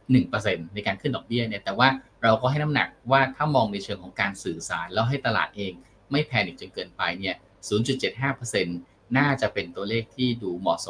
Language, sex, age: Thai, male, 20-39